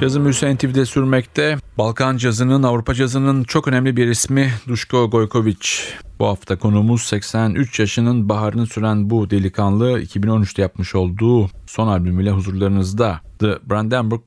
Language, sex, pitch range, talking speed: Turkish, male, 95-115 Hz, 130 wpm